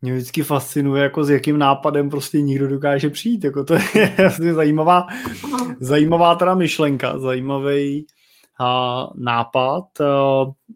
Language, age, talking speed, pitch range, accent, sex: Czech, 20-39, 125 wpm, 125-145 Hz, native, male